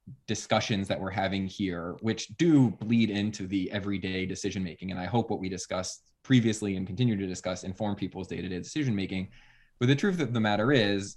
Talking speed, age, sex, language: 195 wpm, 20-39, male, English